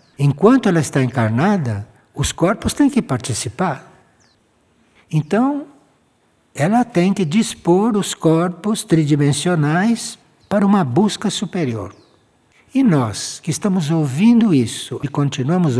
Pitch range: 130-205 Hz